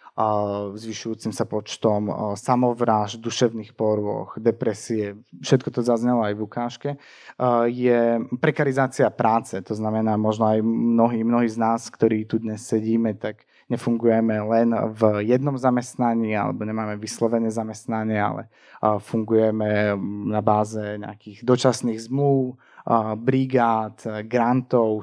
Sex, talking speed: male, 115 wpm